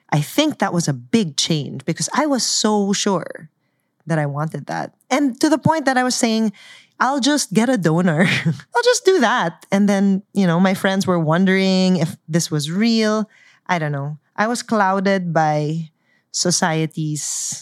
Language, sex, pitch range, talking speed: English, female, 165-240 Hz, 180 wpm